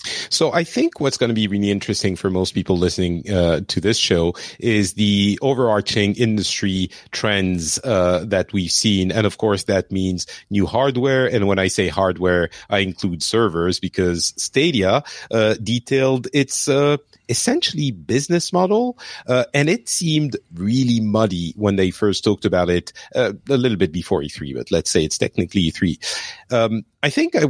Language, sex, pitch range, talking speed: English, male, 95-120 Hz, 170 wpm